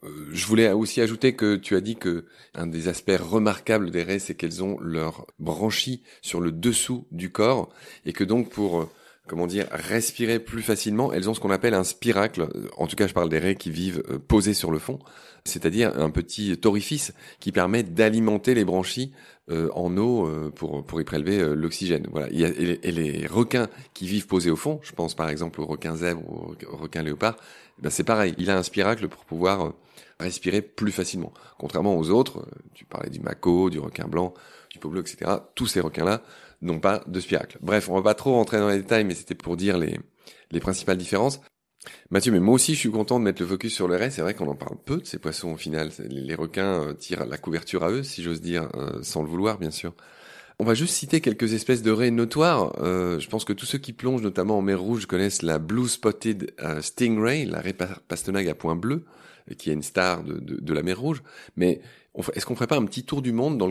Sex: male